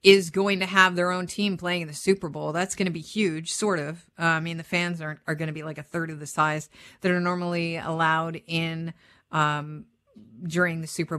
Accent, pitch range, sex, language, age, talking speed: American, 160-200 Hz, female, English, 50-69, 240 wpm